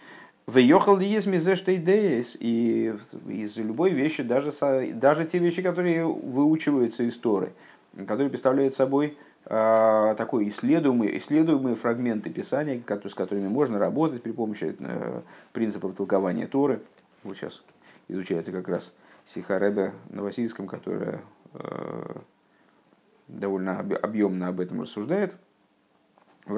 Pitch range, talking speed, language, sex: 105-145 Hz, 115 wpm, Russian, male